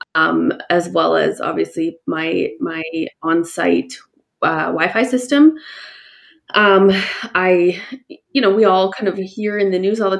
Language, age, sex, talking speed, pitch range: English, 20-39, female, 160 wpm, 180-230 Hz